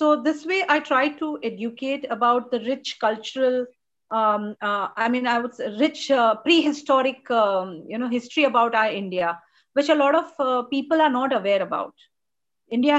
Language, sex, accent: English, female, Indian